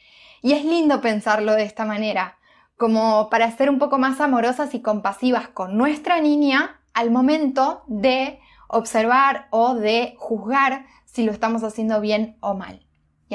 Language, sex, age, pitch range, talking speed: Spanish, female, 10-29, 215-265 Hz, 155 wpm